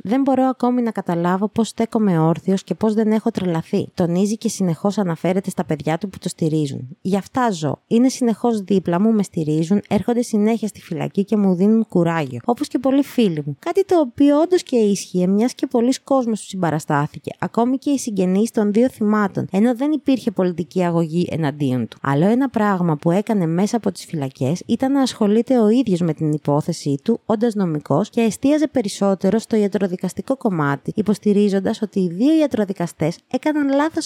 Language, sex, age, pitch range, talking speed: Greek, female, 20-39, 175-230 Hz, 185 wpm